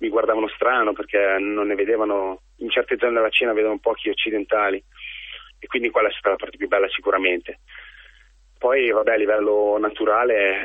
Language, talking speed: Italian, 170 wpm